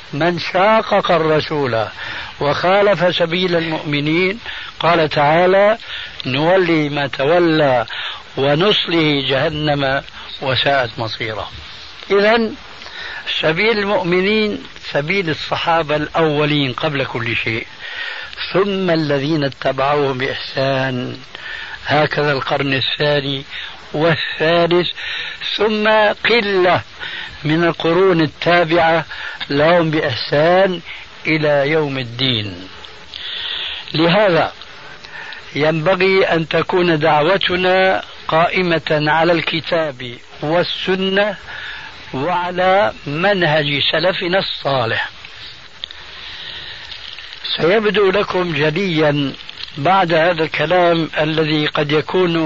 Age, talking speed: 60-79, 75 wpm